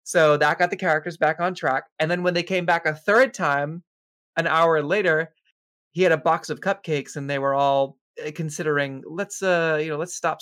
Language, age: English, 20-39